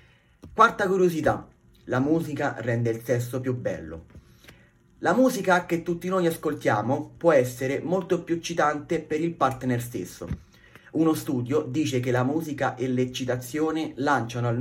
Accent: native